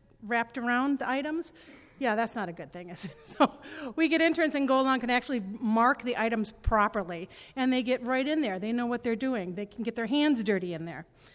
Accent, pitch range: American, 220-280 Hz